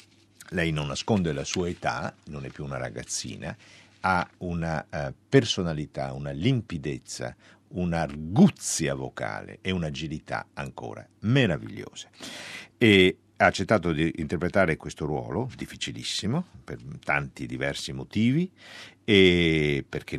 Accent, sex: native, male